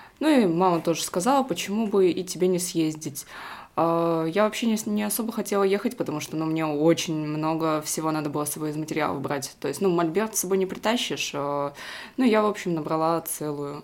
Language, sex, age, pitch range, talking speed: Russian, female, 20-39, 150-190 Hz, 195 wpm